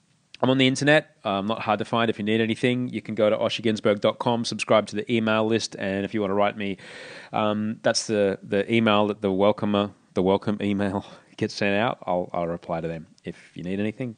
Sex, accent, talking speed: male, Australian, 230 wpm